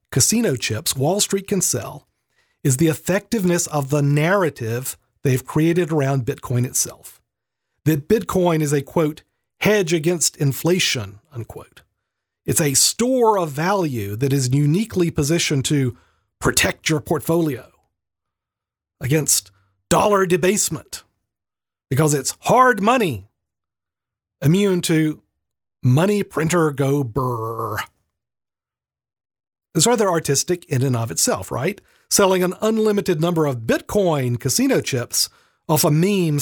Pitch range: 130-185 Hz